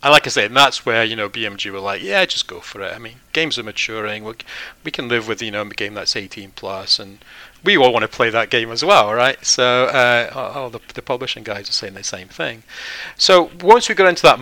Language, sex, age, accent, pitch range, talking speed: English, male, 40-59, British, 105-130 Hz, 265 wpm